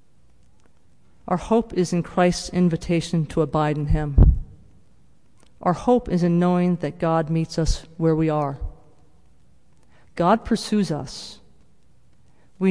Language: English